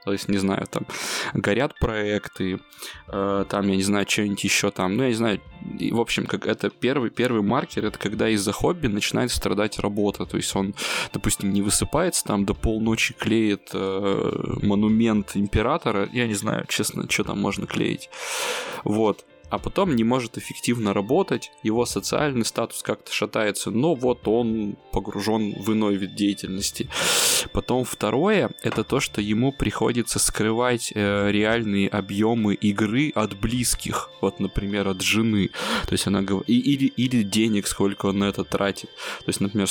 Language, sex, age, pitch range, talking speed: Russian, male, 20-39, 100-110 Hz, 160 wpm